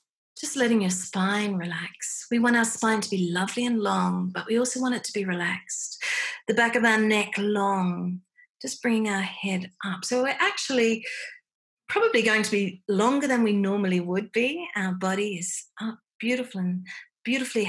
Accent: Australian